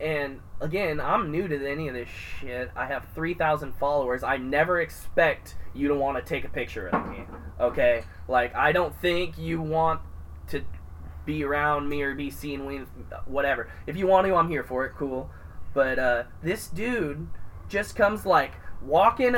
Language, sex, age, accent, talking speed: English, male, 20-39, American, 180 wpm